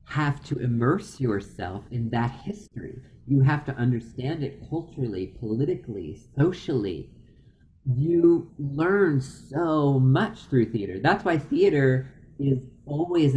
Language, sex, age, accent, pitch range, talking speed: English, male, 40-59, American, 115-140 Hz, 115 wpm